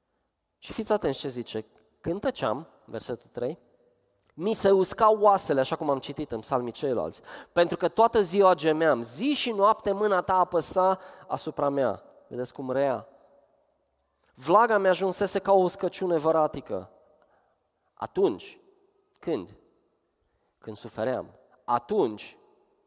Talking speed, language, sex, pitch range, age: 125 wpm, Romanian, male, 140-205 Hz, 20-39